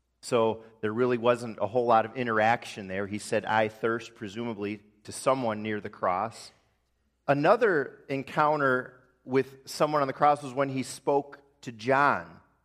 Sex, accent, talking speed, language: male, American, 155 wpm, English